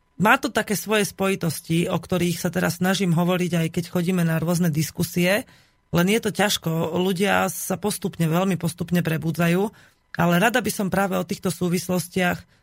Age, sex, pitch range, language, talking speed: 30-49, female, 150-180 Hz, Slovak, 165 wpm